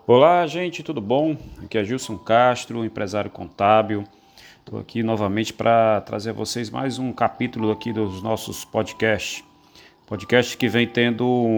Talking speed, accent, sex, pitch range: 145 wpm, Brazilian, male, 105-125 Hz